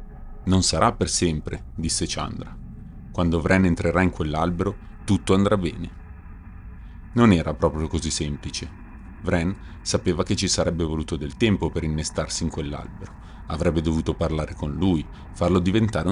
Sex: male